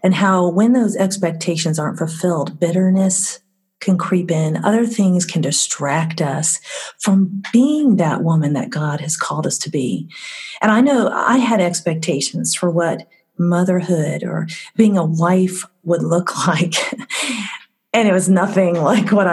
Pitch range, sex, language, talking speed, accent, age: 165-215 Hz, female, English, 150 wpm, American, 40-59